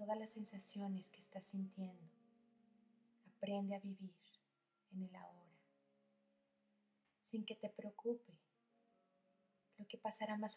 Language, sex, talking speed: Spanish, female, 115 wpm